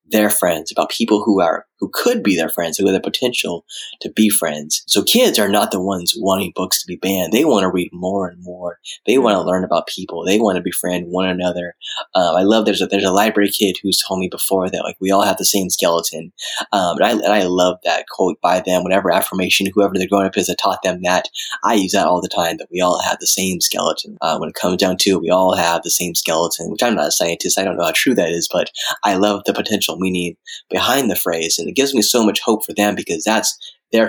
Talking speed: 265 wpm